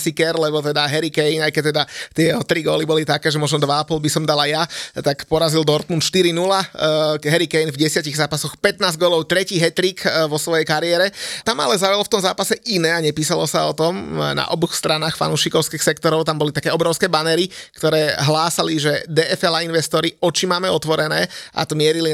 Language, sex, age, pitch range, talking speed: Slovak, male, 30-49, 155-180 Hz, 190 wpm